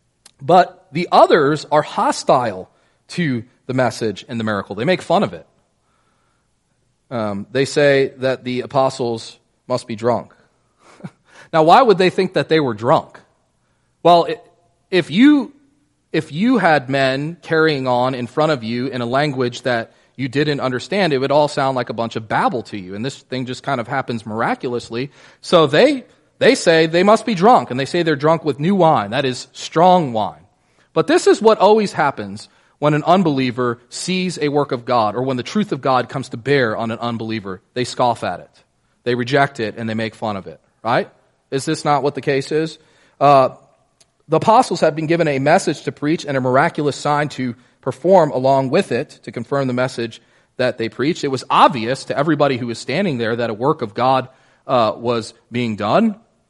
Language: English